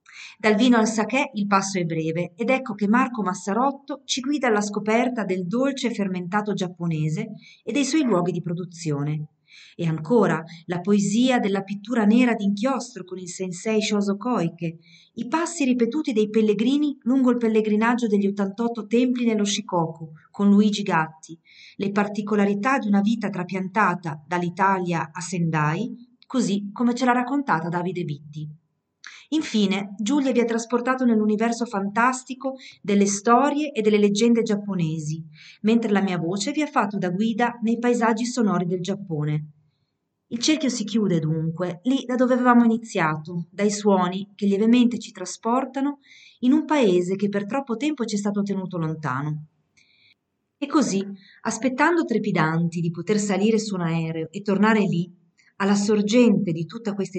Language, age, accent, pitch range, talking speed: Italian, 40-59, native, 180-235 Hz, 150 wpm